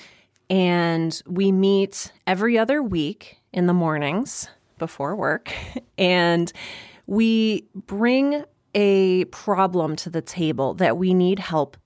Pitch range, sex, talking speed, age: 165-205 Hz, female, 115 wpm, 30-49